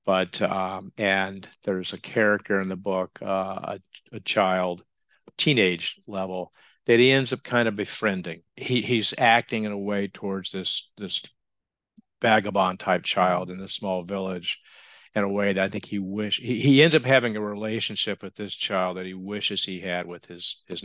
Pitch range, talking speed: 95-110 Hz, 180 wpm